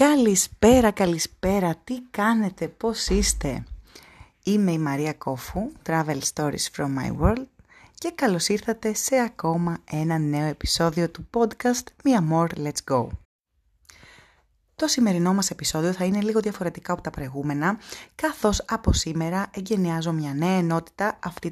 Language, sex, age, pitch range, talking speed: Greek, female, 30-49, 155-205 Hz, 135 wpm